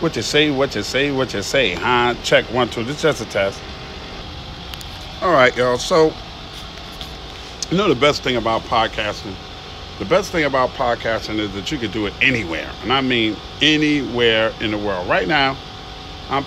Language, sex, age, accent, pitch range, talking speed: English, male, 40-59, American, 95-125 Hz, 185 wpm